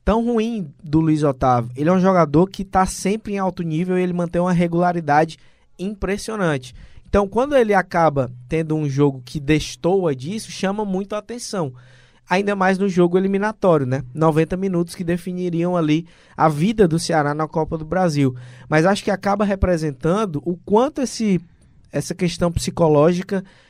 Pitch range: 145-190 Hz